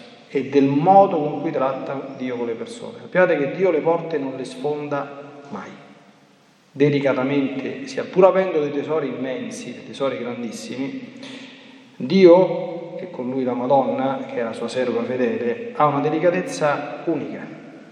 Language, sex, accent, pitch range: Italian, male, native, 140-225 Hz